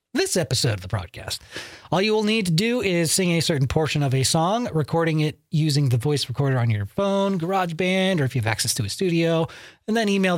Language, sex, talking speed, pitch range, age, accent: English, male, 235 wpm, 125-175 Hz, 30-49, American